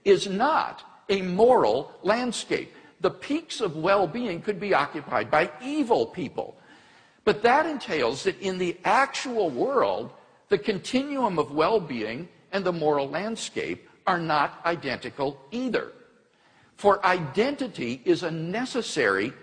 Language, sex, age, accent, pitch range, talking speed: English, male, 60-79, American, 175-255 Hz, 125 wpm